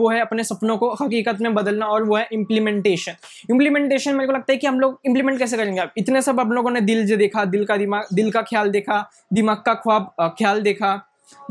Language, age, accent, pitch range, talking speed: English, 20-39, Indian, 215-265 Hz, 230 wpm